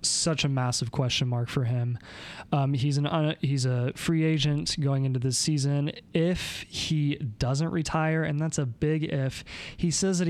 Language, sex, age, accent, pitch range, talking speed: English, male, 20-39, American, 125-150 Hz, 180 wpm